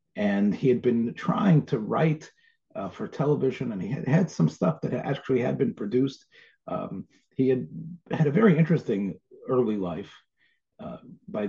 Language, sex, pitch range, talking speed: English, male, 120-190 Hz, 165 wpm